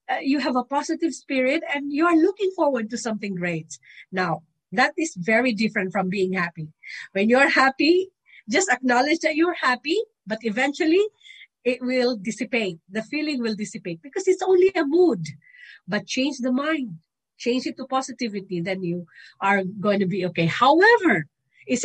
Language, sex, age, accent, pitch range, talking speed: English, female, 50-69, Filipino, 195-300 Hz, 170 wpm